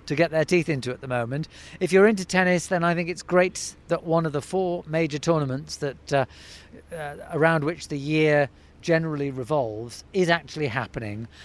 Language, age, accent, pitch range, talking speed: English, 40-59, British, 145-180 Hz, 190 wpm